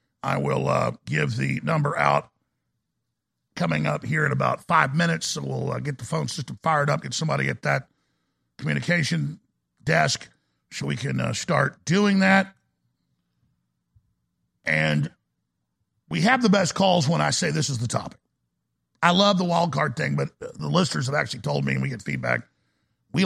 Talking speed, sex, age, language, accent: 170 wpm, male, 50-69, English, American